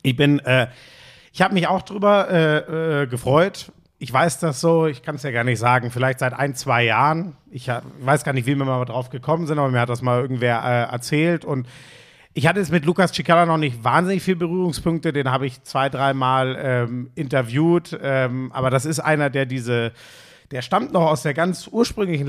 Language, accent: German, German